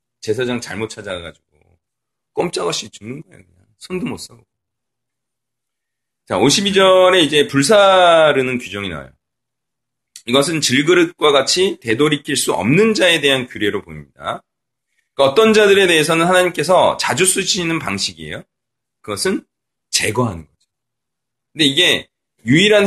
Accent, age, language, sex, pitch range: native, 40-59, Korean, male, 105-165 Hz